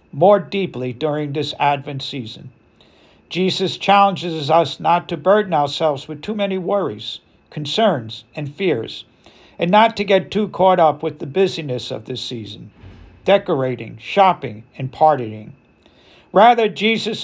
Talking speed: 135 wpm